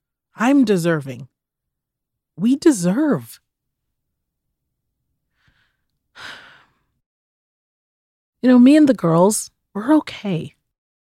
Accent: American